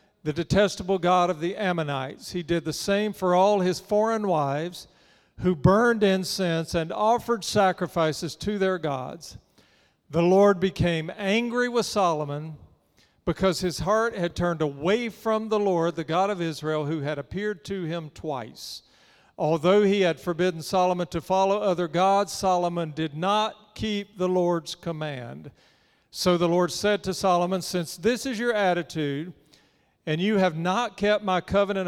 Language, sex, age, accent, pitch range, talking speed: English, male, 50-69, American, 165-200 Hz, 155 wpm